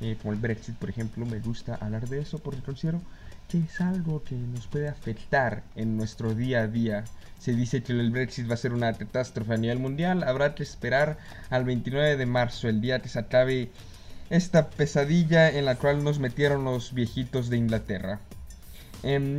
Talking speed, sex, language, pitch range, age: 190 wpm, male, Spanish, 115-145 Hz, 20-39